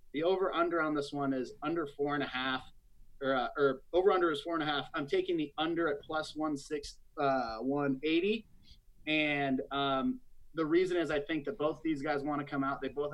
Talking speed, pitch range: 225 wpm, 135-155 Hz